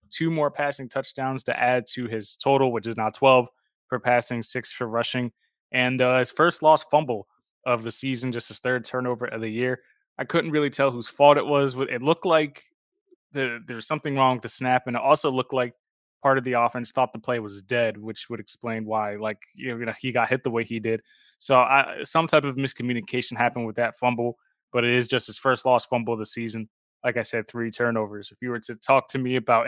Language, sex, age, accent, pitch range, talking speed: English, male, 20-39, American, 115-130 Hz, 235 wpm